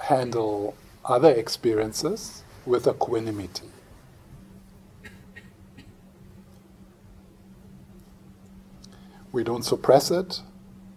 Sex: male